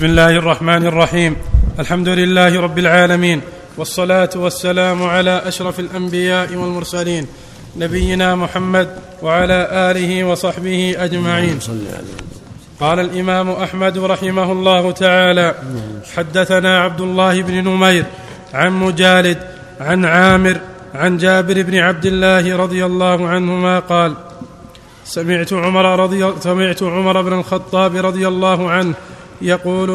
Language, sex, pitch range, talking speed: Arabic, male, 175-185 Hz, 110 wpm